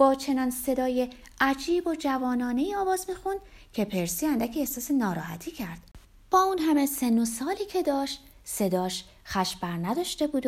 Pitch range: 185-285 Hz